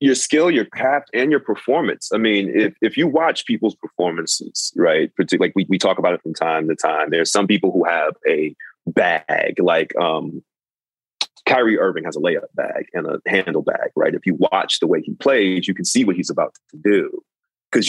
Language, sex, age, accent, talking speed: English, male, 30-49, American, 210 wpm